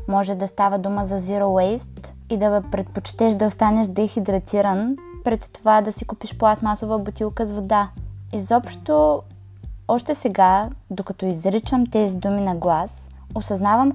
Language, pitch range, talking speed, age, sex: Bulgarian, 190-240 Hz, 140 wpm, 20-39, female